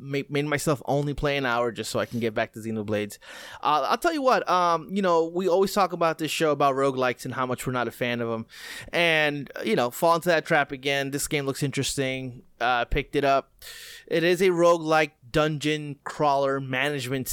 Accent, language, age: American, English, 20-39